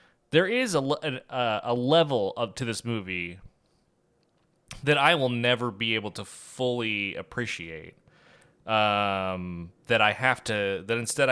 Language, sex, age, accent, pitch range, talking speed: English, male, 20-39, American, 95-125 Hz, 135 wpm